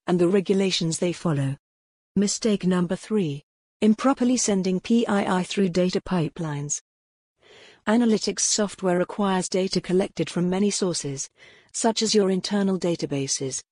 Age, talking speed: 50-69, 120 wpm